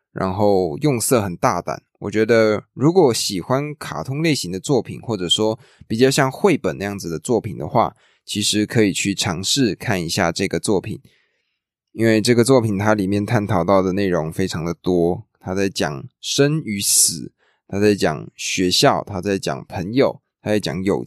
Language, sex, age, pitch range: Chinese, male, 20-39, 95-115 Hz